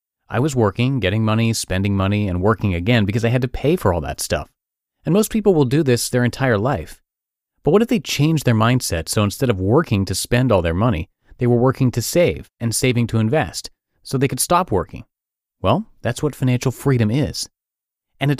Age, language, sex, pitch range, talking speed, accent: 30-49, English, male, 95-130 Hz, 215 wpm, American